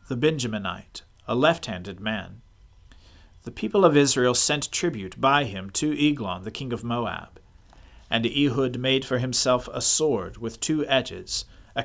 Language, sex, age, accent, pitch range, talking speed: English, male, 40-59, American, 105-145 Hz, 150 wpm